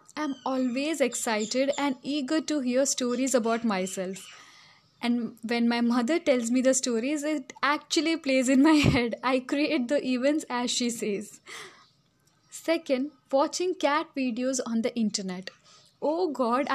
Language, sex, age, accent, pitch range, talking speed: English, female, 10-29, Indian, 245-315 Hz, 145 wpm